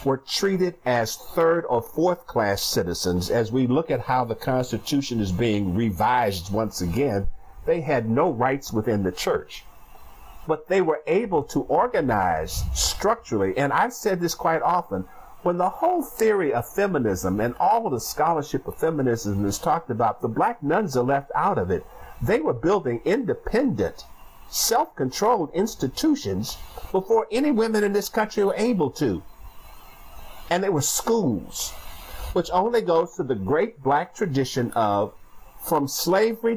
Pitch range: 110-175 Hz